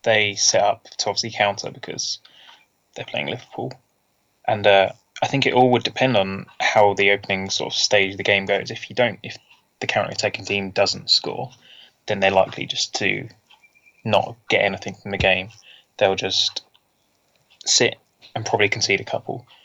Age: 20-39